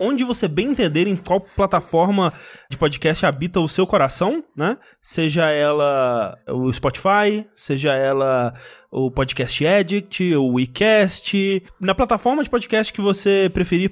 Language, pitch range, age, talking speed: Portuguese, 140-195 Hz, 20-39, 140 wpm